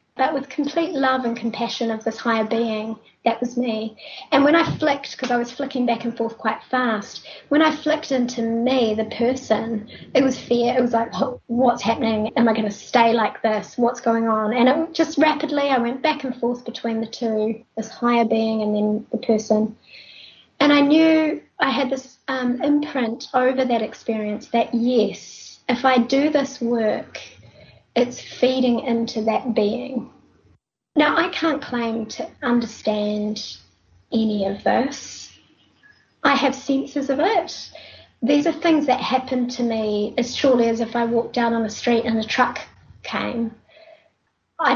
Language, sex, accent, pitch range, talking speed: English, female, Australian, 225-270 Hz, 175 wpm